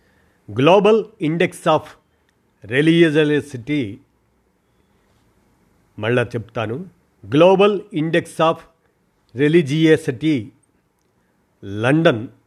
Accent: native